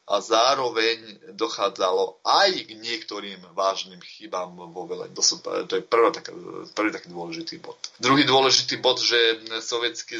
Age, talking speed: 30-49, 125 wpm